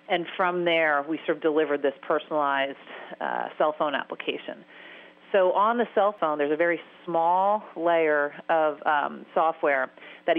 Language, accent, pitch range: English, American, 155-205 Hz